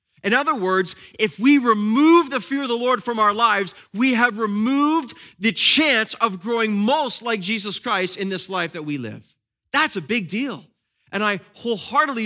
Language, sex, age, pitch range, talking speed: English, male, 30-49, 185-230 Hz, 185 wpm